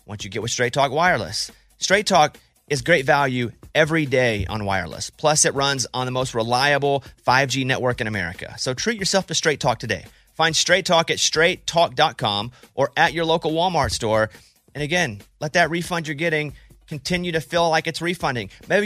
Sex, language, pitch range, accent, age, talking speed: male, English, 125-165 Hz, American, 30-49, 190 wpm